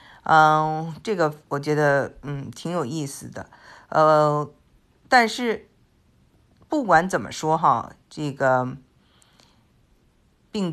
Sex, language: female, Chinese